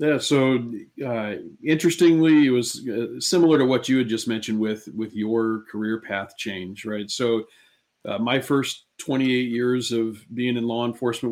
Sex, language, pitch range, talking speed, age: male, English, 110-120 Hz, 170 wpm, 40-59